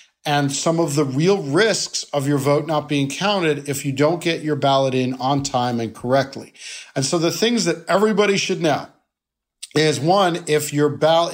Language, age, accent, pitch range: English, 50-69, American, 140-170 Hz